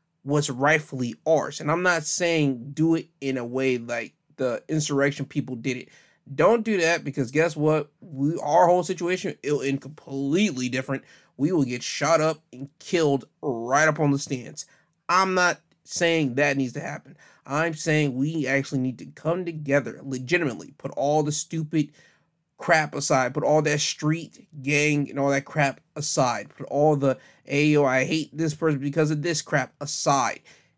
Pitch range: 135-165 Hz